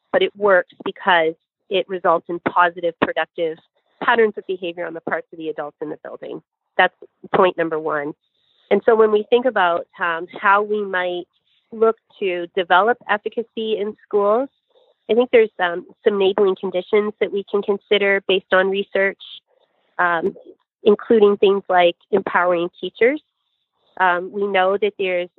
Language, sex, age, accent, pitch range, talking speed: English, female, 30-49, American, 180-215 Hz, 155 wpm